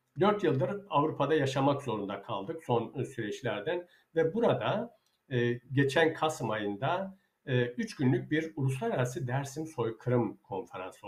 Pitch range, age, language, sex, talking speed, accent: 120-165 Hz, 60-79, Turkish, male, 110 wpm, native